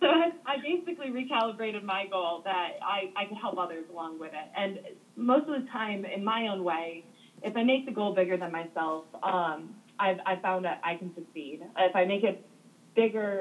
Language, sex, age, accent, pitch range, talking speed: English, female, 20-39, American, 185-230 Hz, 200 wpm